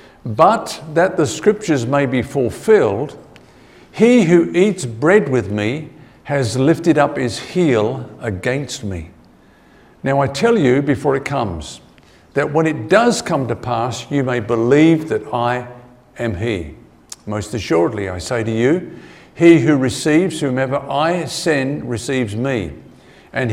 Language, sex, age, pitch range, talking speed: English, male, 50-69, 125-170 Hz, 145 wpm